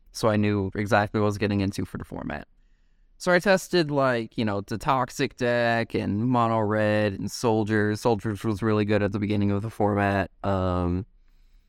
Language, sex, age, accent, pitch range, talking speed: English, male, 20-39, American, 100-115 Hz, 190 wpm